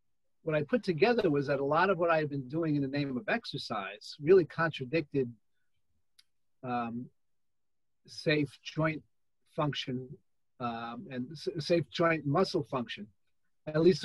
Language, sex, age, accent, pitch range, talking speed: English, male, 40-59, American, 130-165 Hz, 140 wpm